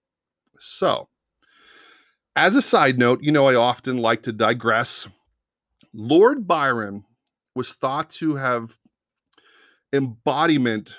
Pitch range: 110-145 Hz